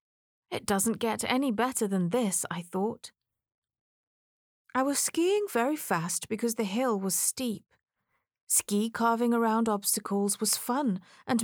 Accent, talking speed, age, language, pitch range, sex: British, 135 wpm, 30-49, English, 190-250 Hz, female